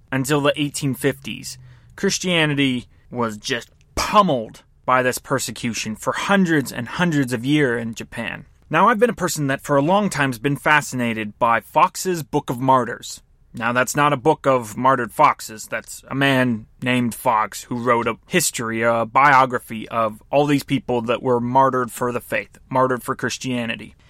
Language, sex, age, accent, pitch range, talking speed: English, male, 30-49, American, 130-175 Hz, 170 wpm